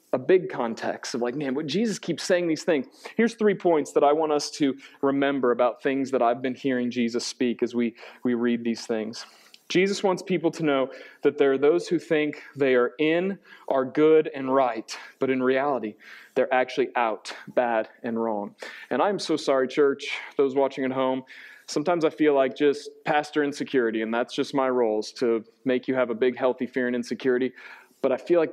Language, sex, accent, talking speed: English, male, American, 205 wpm